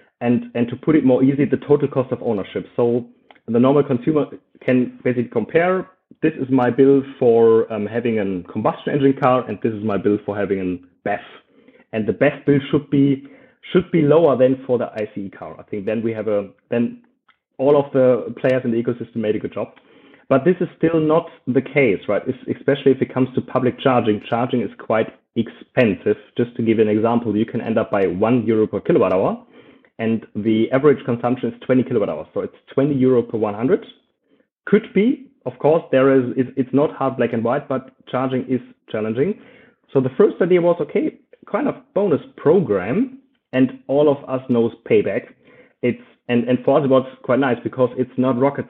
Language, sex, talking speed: English, male, 205 wpm